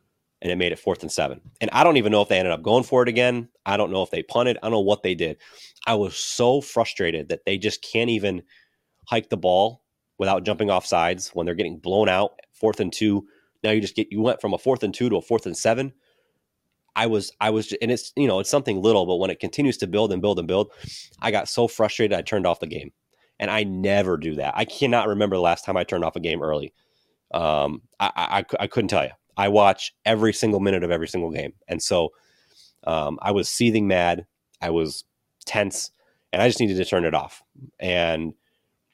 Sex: male